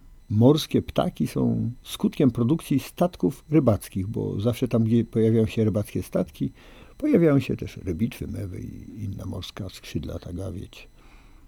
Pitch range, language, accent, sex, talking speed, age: 95-120 Hz, Polish, native, male, 135 wpm, 50-69